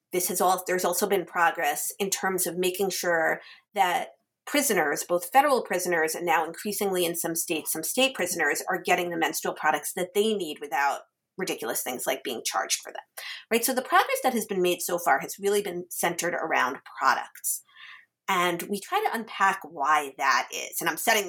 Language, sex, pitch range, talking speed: English, female, 175-245 Hz, 195 wpm